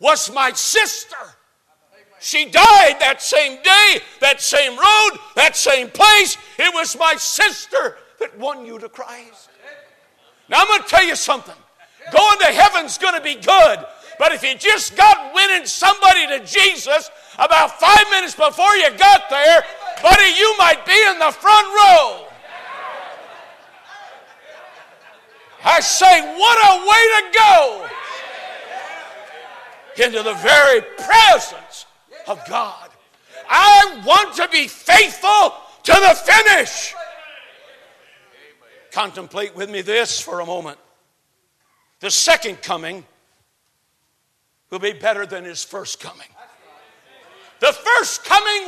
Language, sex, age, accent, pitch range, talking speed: English, male, 50-69, American, 280-395 Hz, 125 wpm